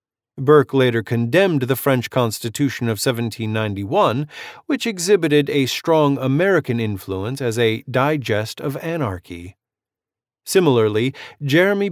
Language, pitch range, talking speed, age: English, 115-155 Hz, 105 wpm, 40-59